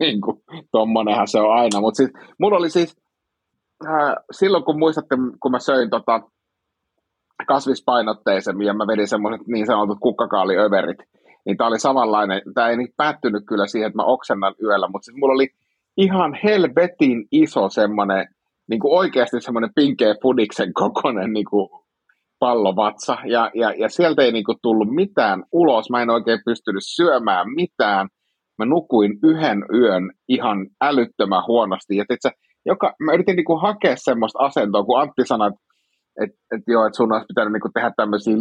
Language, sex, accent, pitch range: Finnish, male, native, 105-145 Hz